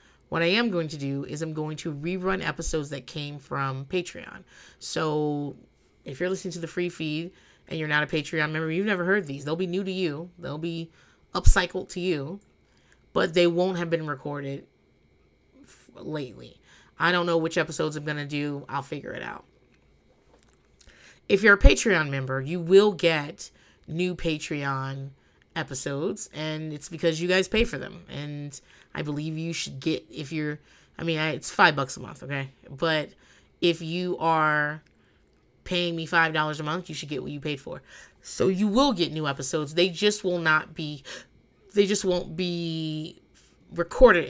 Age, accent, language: 30-49, American, English